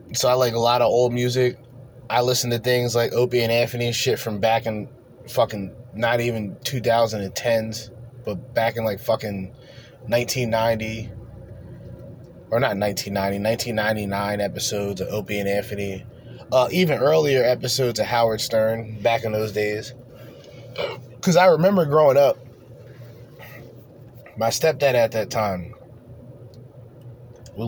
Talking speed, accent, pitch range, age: 130 wpm, American, 110-125 Hz, 20-39